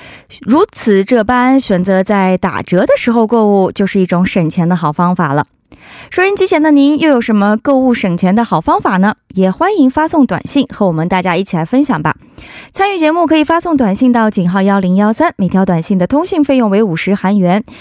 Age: 20-39